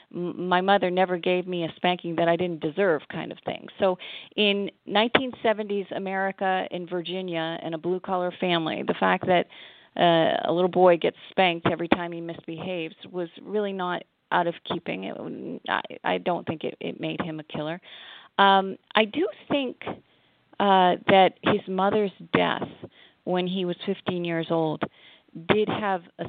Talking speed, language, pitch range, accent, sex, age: 160 wpm, English, 165-190 Hz, American, female, 40-59